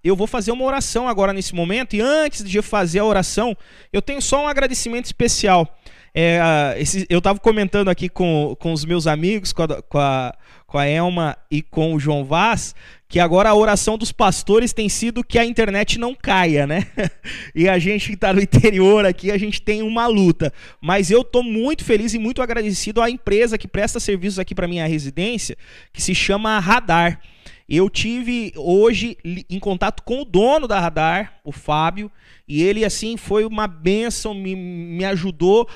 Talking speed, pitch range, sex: 190 wpm, 180-220 Hz, male